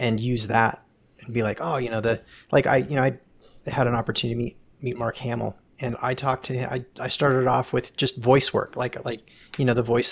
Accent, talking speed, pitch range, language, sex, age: American, 250 wpm, 115-145 Hz, English, male, 30-49